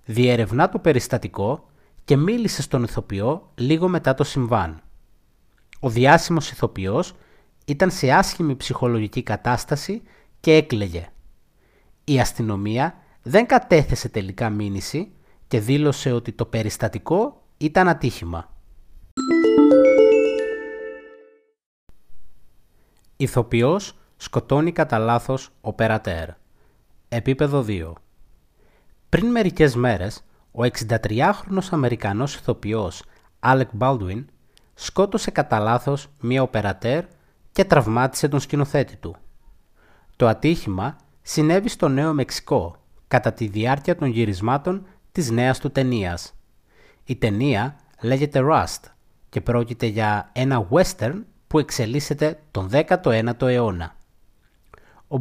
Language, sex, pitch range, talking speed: Greek, male, 110-155 Hz, 100 wpm